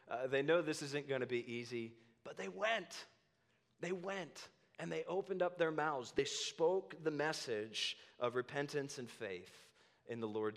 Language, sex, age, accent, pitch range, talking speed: English, male, 30-49, American, 115-165 Hz, 175 wpm